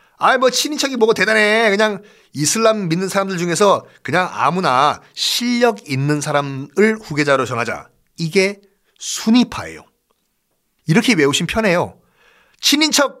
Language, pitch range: Korean, 145-215 Hz